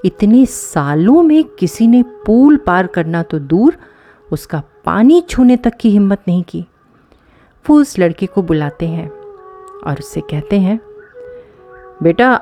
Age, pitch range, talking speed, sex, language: 30-49, 165-260 Hz, 140 wpm, female, Hindi